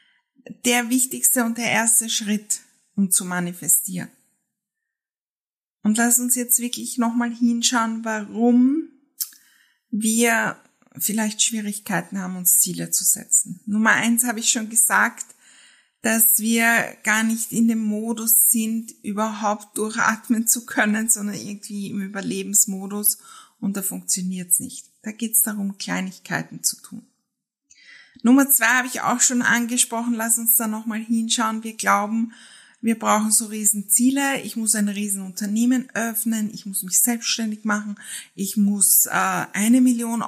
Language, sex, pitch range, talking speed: German, female, 210-250 Hz, 140 wpm